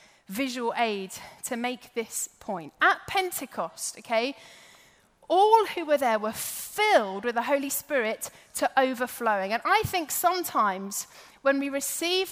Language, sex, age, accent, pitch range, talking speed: English, female, 30-49, British, 225-315 Hz, 135 wpm